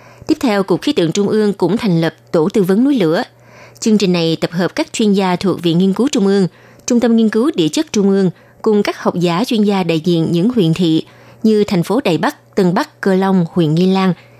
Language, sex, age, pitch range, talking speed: Vietnamese, female, 20-39, 170-230 Hz, 250 wpm